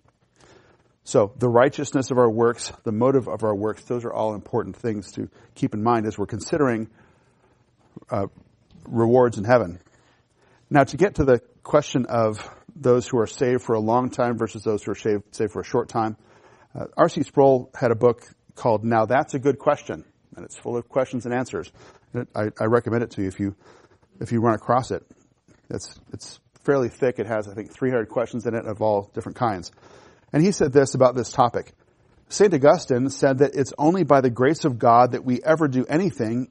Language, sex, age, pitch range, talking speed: English, male, 40-59, 115-140 Hz, 205 wpm